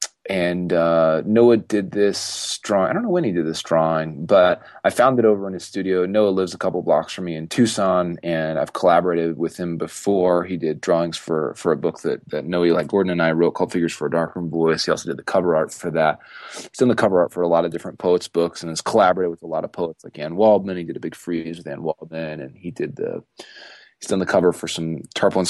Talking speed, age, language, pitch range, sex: 255 wpm, 30-49, English, 80-100 Hz, male